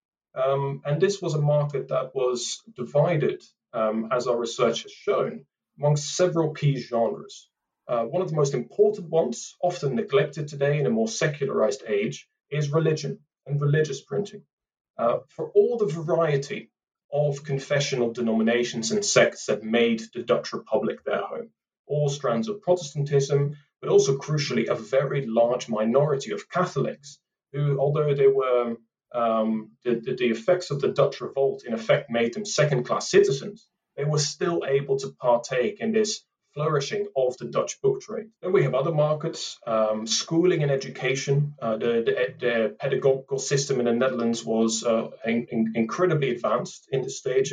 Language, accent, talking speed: English, British, 165 wpm